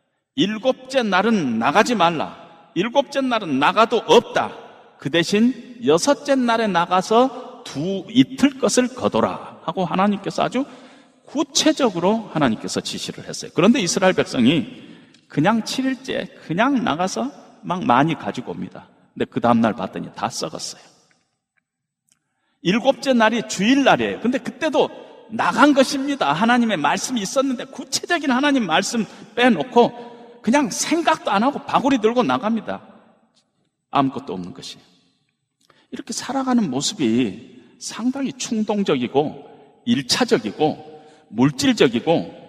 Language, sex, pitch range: Korean, male, 175-260 Hz